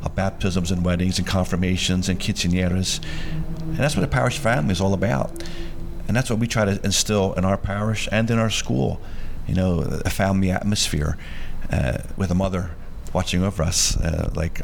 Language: English